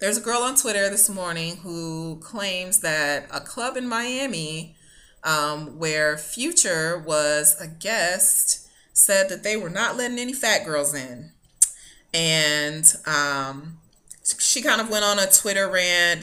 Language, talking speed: English, 150 wpm